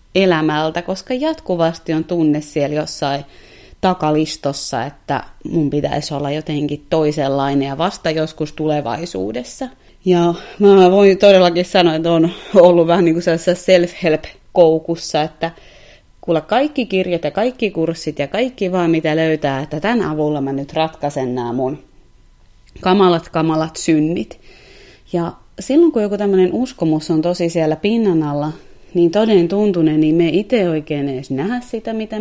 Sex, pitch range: female, 155-190 Hz